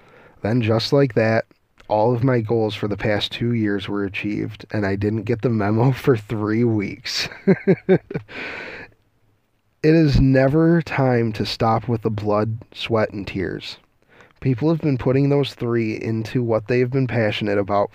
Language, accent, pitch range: English, American, 105-130 Hz